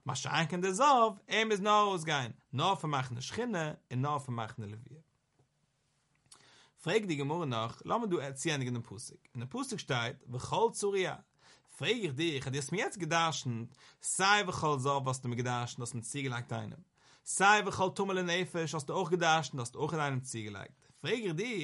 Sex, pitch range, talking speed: male, 135-185 Hz, 60 wpm